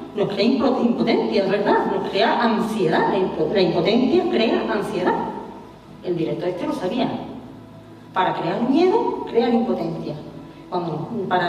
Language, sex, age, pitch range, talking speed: Spanish, female, 40-59, 195-300 Hz, 125 wpm